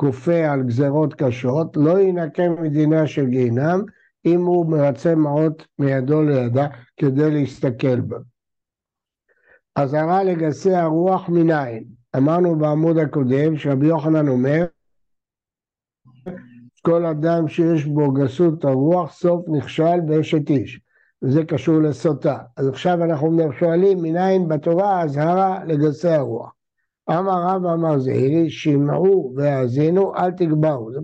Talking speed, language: 110 wpm, Hebrew